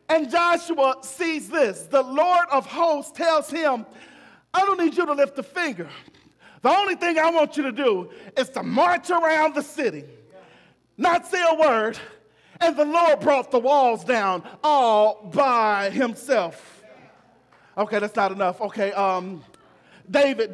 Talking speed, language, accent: 155 wpm, English, American